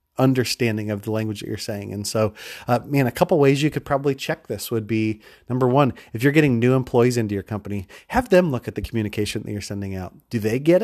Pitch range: 105-130 Hz